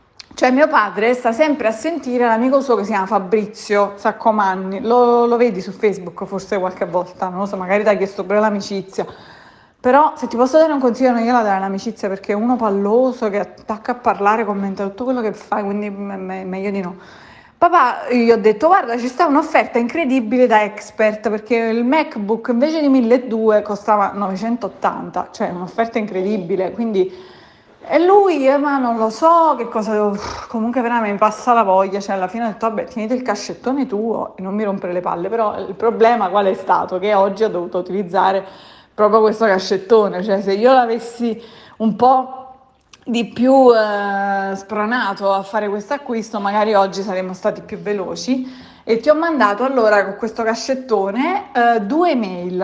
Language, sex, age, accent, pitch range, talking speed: Italian, female, 30-49, native, 200-245 Hz, 185 wpm